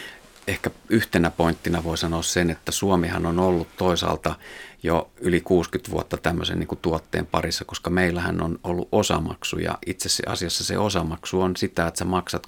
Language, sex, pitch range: Finnish, male, 80-90 Hz